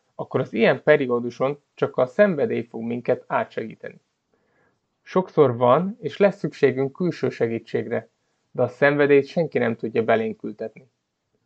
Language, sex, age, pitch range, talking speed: Hungarian, male, 30-49, 125-165 Hz, 125 wpm